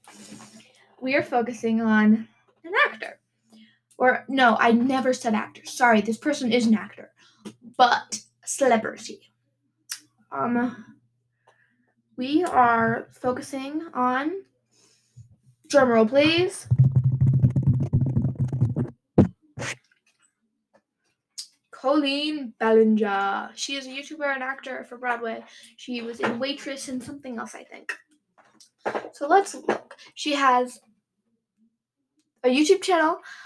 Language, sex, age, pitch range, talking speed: English, female, 10-29, 220-275 Hz, 95 wpm